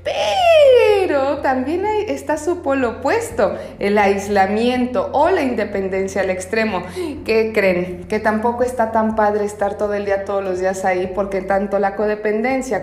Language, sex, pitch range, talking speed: English, female, 215-295 Hz, 150 wpm